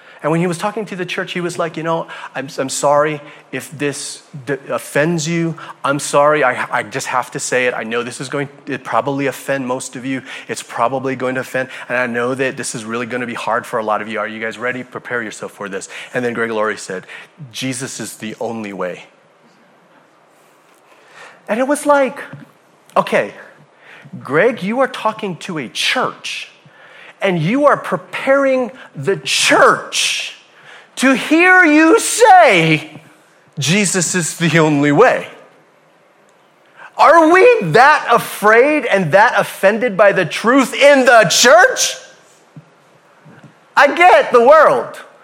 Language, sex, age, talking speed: English, male, 30-49, 165 wpm